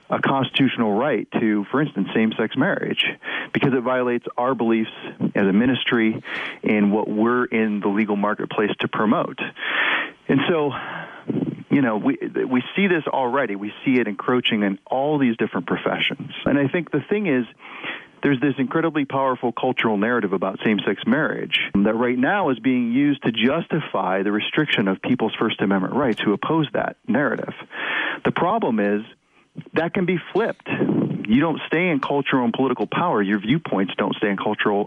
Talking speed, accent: 170 wpm, American